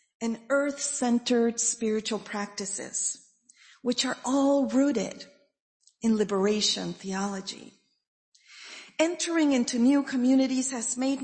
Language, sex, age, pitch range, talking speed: English, female, 40-59, 215-270 Hz, 90 wpm